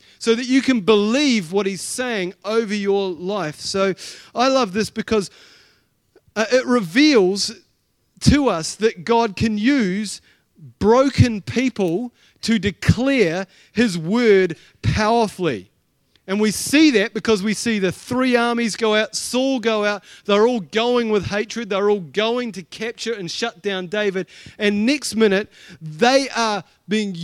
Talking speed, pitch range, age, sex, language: 145 wpm, 190-240 Hz, 30-49, male, English